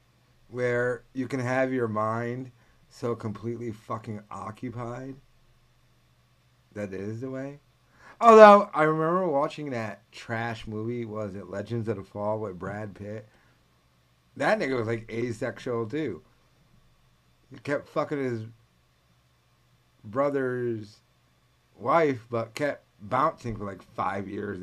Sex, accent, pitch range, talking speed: male, American, 100-135 Hz, 120 wpm